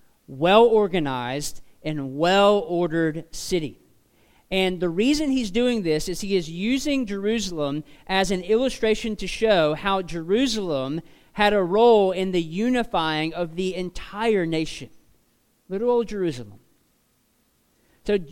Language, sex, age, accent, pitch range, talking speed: English, male, 40-59, American, 160-215 Hz, 120 wpm